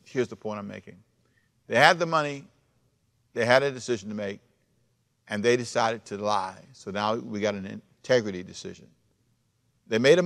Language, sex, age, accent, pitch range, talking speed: English, male, 50-69, American, 110-135 Hz, 175 wpm